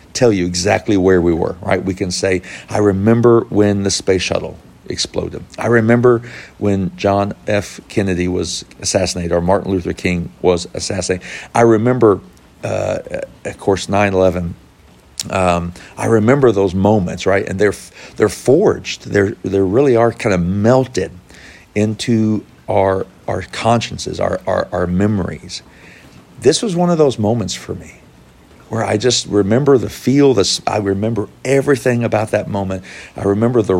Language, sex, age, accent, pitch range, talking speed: English, male, 50-69, American, 95-115 Hz, 150 wpm